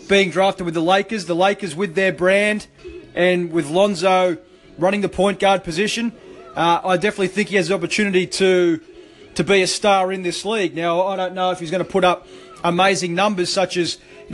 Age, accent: 30-49, Australian